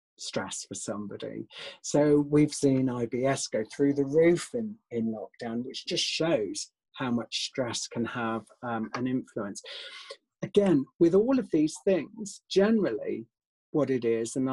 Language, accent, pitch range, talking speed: English, British, 115-165 Hz, 150 wpm